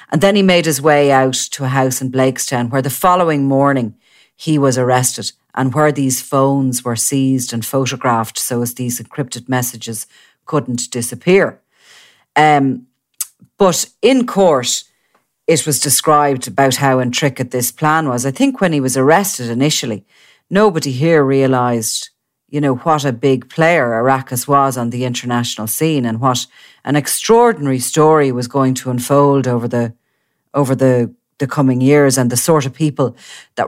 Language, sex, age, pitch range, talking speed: English, female, 40-59, 125-150 Hz, 160 wpm